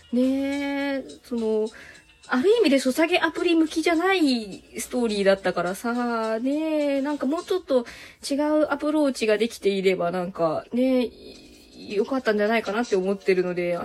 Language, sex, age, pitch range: Japanese, female, 20-39, 230-310 Hz